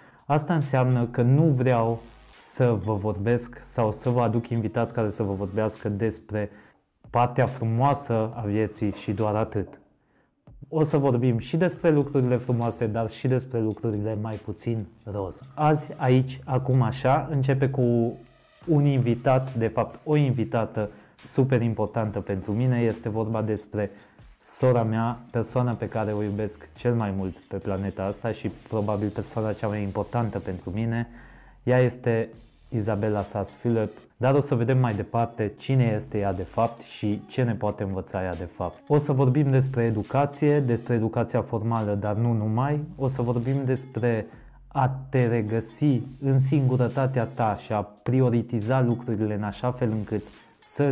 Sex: male